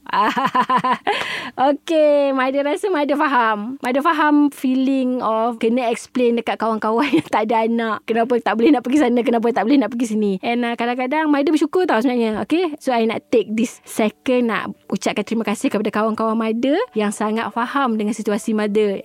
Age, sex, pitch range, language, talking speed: 20-39, female, 225-270 Hz, Malay, 175 wpm